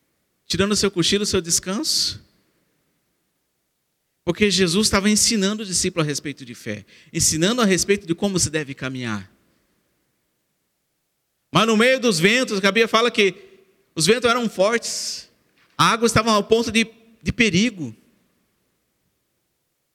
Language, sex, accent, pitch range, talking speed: Portuguese, male, Brazilian, 155-210 Hz, 140 wpm